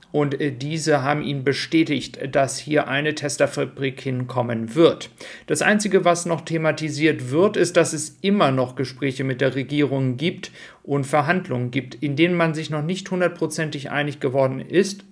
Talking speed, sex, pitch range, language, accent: 160 wpm, male, 135-160 Hz, German, German